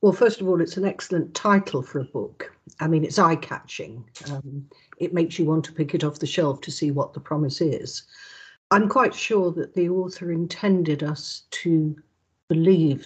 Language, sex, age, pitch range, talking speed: English, female, 60-79, 150-185 Hz, 195 wpm